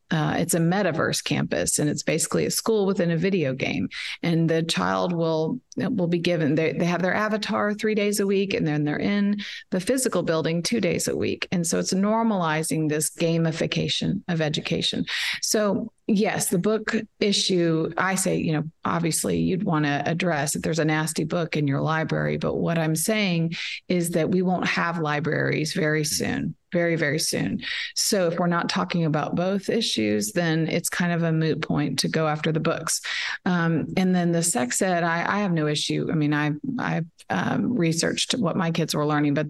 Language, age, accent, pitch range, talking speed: English, 40-59, American, 150-185 Hz, 195 wpm